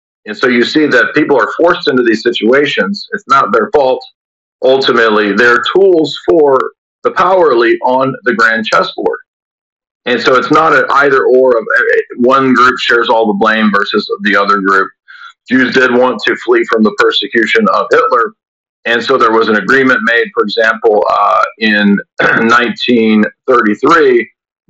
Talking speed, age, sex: 160 wpm, 40-59, male